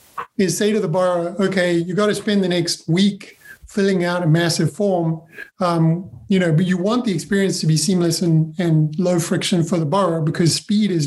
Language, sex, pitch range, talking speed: English, male, 170-200 Hz, 205 wpm